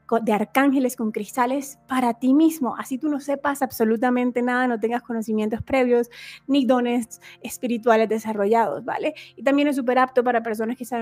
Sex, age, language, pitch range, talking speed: female, 20-39, Spanish, 220-255 Hz, 170 wpm